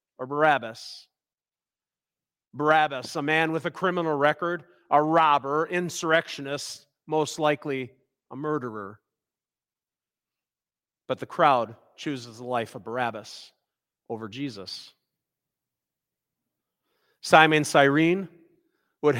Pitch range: 140-195 Hz